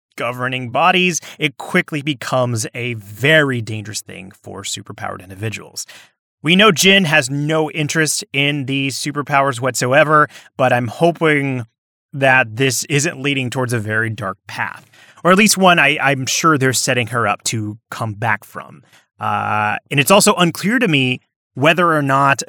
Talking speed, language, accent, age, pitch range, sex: 155 wpm, English, American, 30-49, 120-155 Hz, male